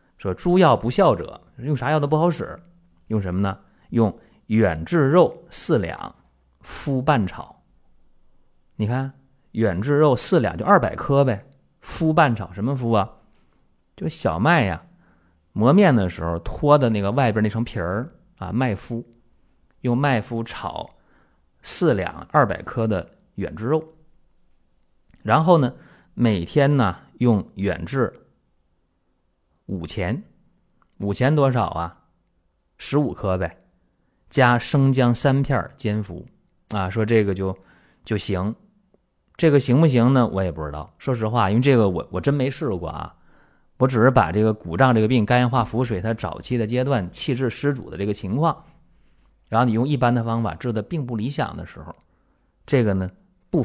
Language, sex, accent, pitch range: Chinese, male, native, 95-135 Hz